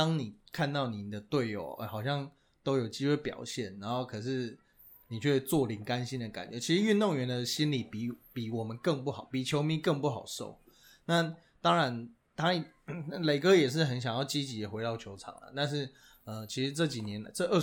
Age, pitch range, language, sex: 20-39, 120-165 Hz, Chinese, male